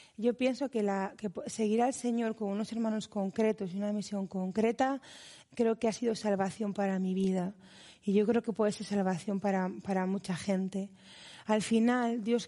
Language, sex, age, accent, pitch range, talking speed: Spanish, female, 30-49, Spanish, 195-225 Hz, 180 wpm